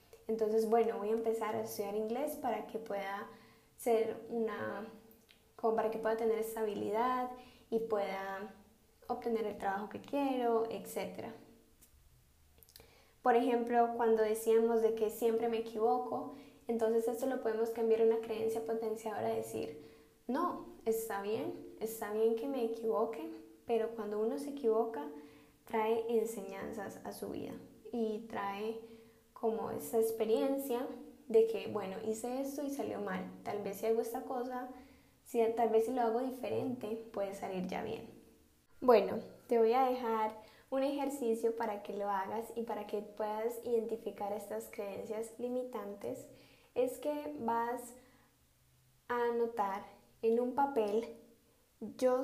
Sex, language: female, Spanish